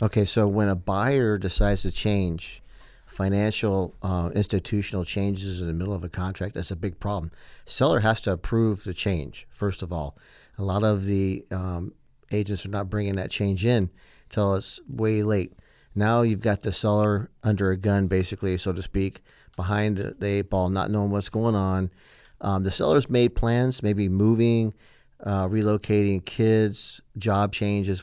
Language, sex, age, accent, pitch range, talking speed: English, male, 50-69, American, 90-105 Hz, 170 wpm